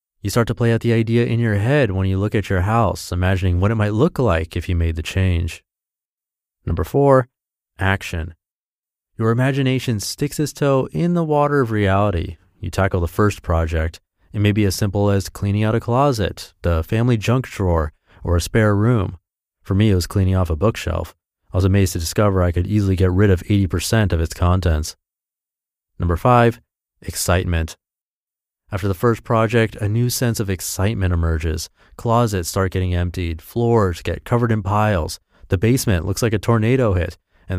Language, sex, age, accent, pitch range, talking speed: English, male, 30-49, American, 90-115 Hz, 185 wpm